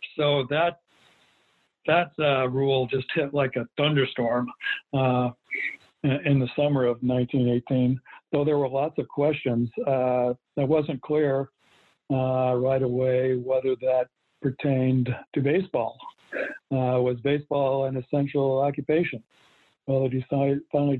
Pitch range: 125-140 Hz